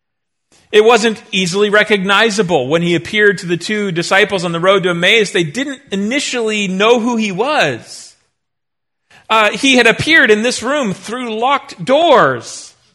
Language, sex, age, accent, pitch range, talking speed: English, male, 40-59, American, 165-240 Hz, 155 wpm